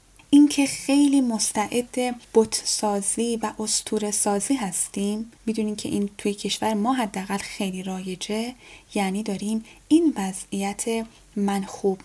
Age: 10-29